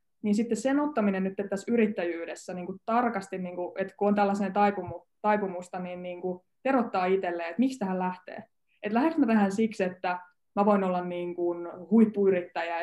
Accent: native